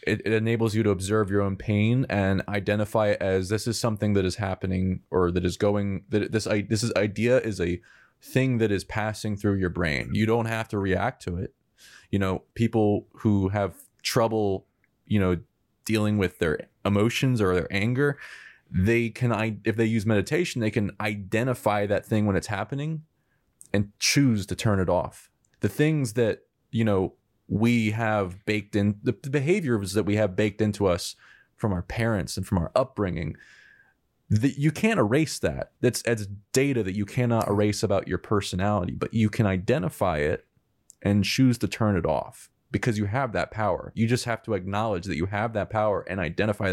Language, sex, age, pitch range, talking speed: English, male, 20-39, 95-115 Hz, 190 wpm